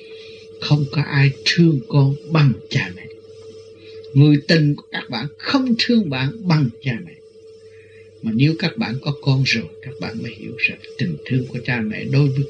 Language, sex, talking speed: Vietnamese, male, 180 wpm